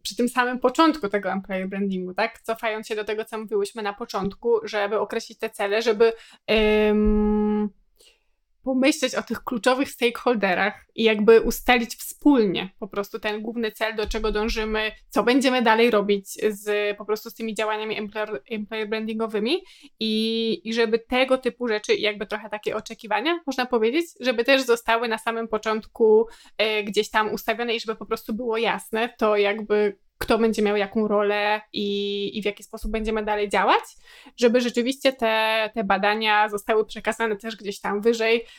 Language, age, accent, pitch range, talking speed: Polish, 20-39, native, 210-235 Hz, 165 wpm